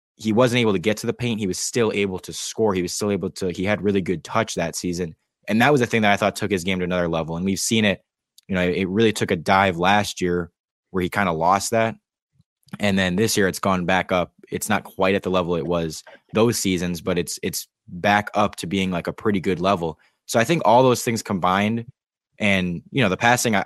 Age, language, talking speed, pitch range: 20-39, English, 255 wpm, 90-110 Hz